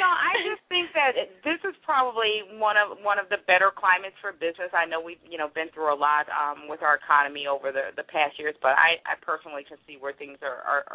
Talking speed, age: 245 wpm, 40-59